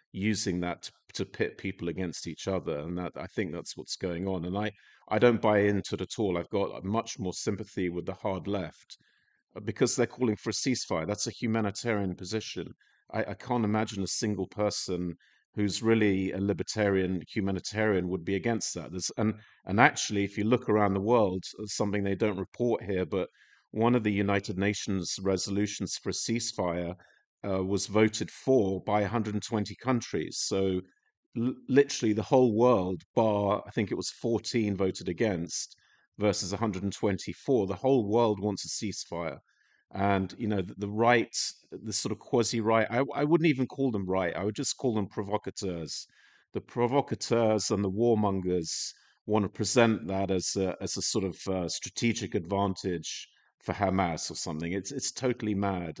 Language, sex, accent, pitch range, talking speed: English, male, British, 95-115 Hz, 175 wpm